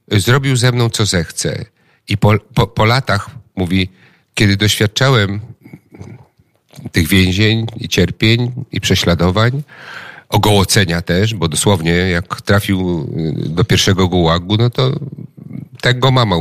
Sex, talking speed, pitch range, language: male, 120 wpm, 95-125 Hz, Polish